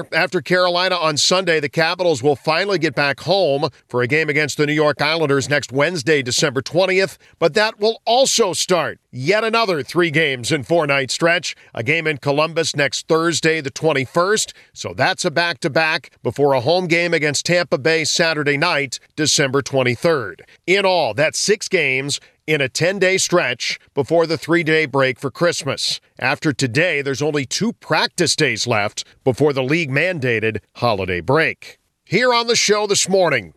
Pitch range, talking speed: 140-175 Hz, 165 wpm